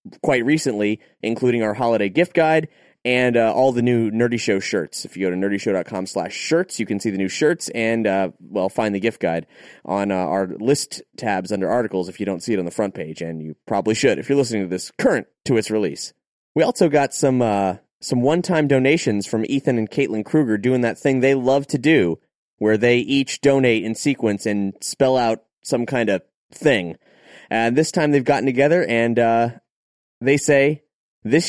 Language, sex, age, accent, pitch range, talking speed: English, male, 20-39, American, 115-170 Hz, 205 wpm